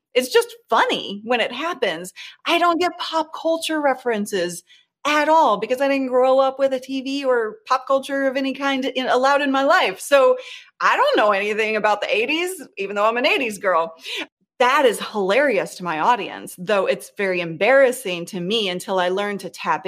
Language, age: English, 30-49